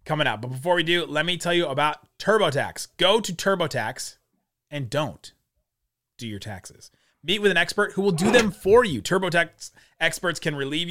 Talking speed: 185 wpm